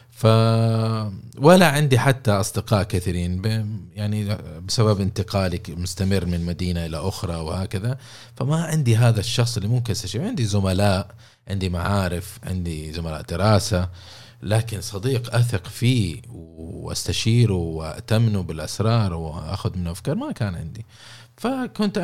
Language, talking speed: Arabic, 120 wpm